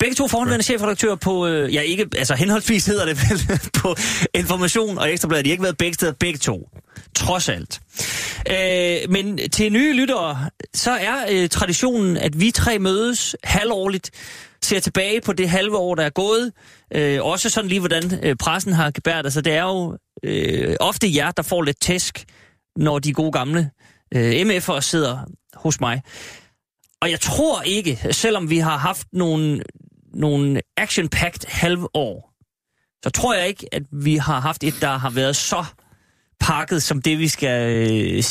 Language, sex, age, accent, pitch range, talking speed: Danish, male, 30-49, native, 145-190 Hz, 170 wpm